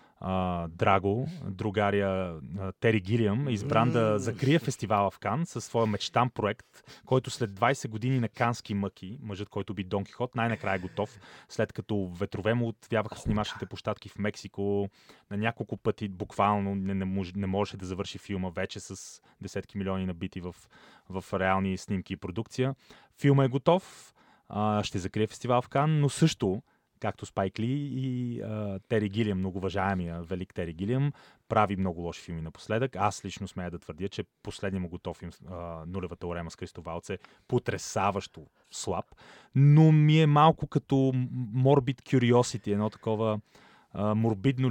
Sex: male